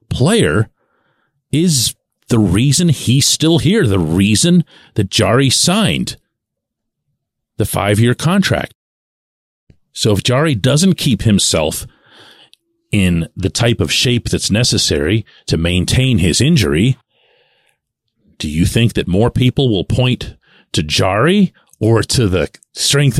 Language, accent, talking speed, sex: English, American, 120 wpm, male